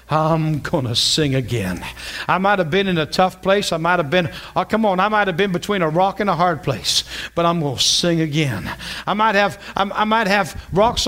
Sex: male